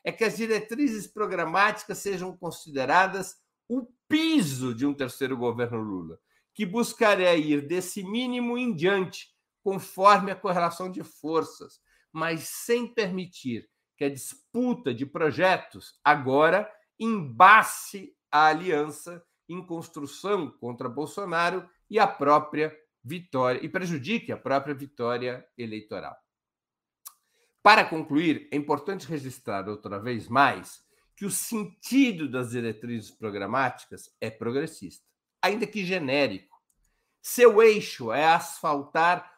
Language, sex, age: Portuguese, male, 60-79